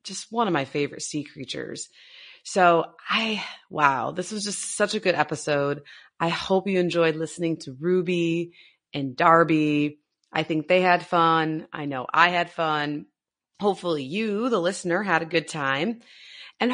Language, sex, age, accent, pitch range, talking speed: English, female, 30-49, American, 155-190 Hz, 160 wpm